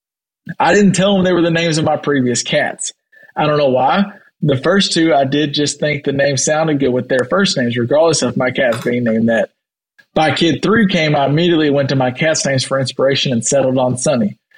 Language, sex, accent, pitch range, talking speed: English, male, American, 135-165 Hz, 225 wpm